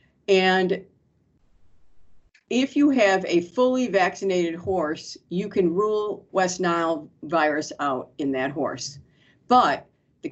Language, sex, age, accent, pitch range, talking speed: English, female, 50-69, American, 170-200 Hz, 115 wpm